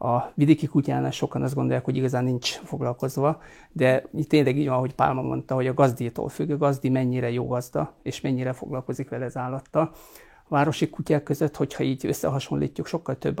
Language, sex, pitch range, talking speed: Hungarian, male, 130-150 Hz, 180 wpm